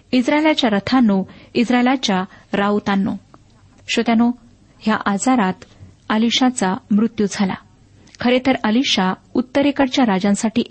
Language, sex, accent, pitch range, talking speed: Marathi, female, native, 200-245 Hz, 80 wpm